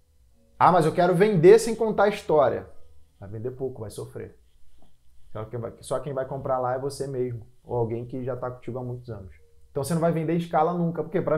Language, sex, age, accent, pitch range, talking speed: Portuguese, male, 20-39, Brazilian, 120-185 Hz, 225 wpm